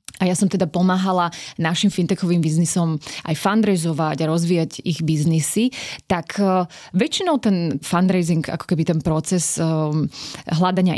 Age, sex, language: 20-39, female, Slovak